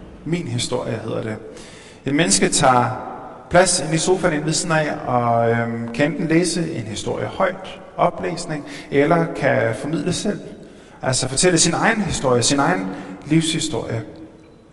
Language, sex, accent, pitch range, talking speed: Danish, male, native, 135-175 Hz, 145 wpm